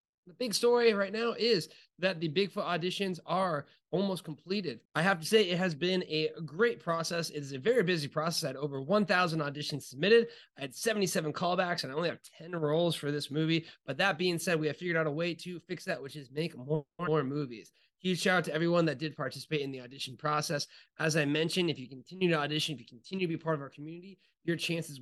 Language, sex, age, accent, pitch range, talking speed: English, male, 20-39, American, 145-180 Hz, 235 wpm